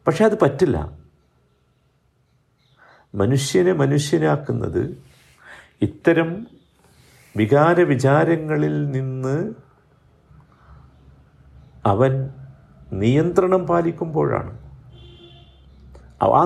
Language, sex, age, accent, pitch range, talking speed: Malayalam, male, 50-69, native, 105-155 Hz, 45 wpm